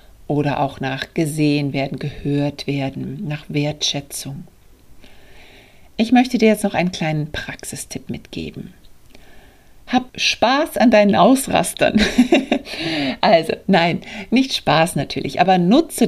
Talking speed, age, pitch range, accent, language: 110 wpm, 60-79, 145-180 Hz, German, German